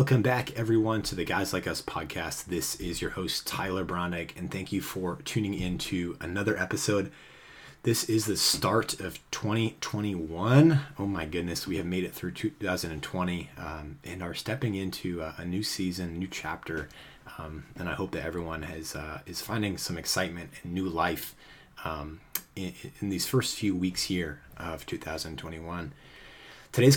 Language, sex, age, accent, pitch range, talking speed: English, male, 30-49, American, 85-110 Hz, 170 wpm